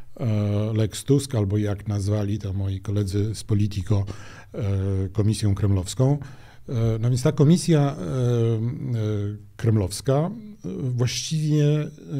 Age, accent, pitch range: 50-69, native, 105-135 Hz